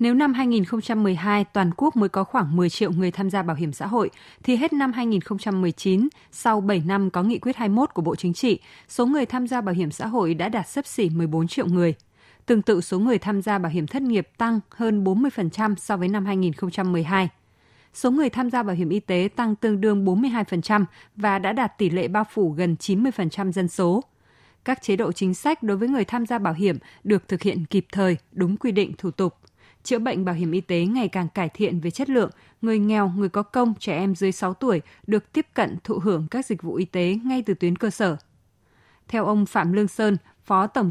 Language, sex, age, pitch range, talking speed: Vietnamese, female, 20-39, 180-230 Hz, 225 wpm